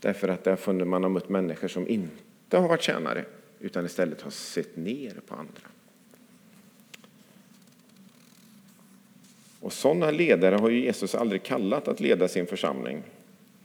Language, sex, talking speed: English, male, 145 wpm